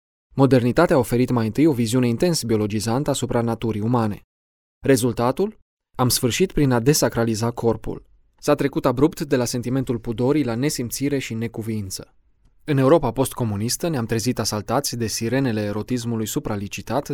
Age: 20-39